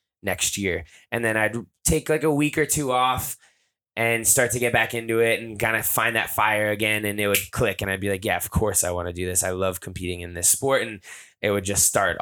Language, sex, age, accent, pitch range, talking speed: English, male, 20-39, American, 95-120 Hz, 260 wpm